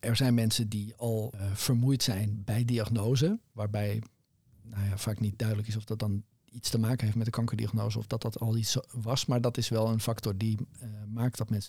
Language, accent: Dutch, Dutch